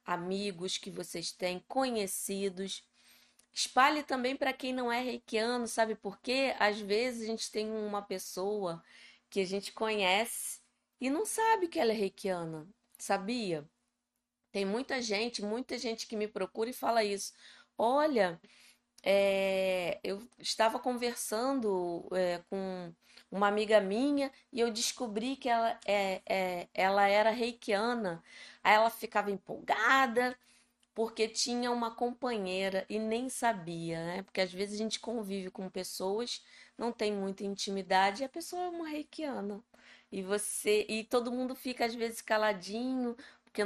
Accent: Brazilian